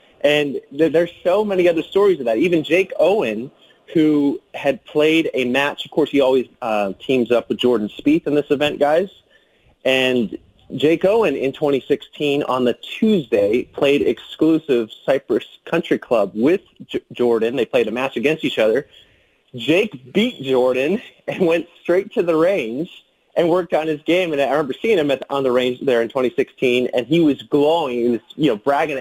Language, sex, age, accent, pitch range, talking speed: English, male, 30-49, American, 130-175 Hz, 180 wpm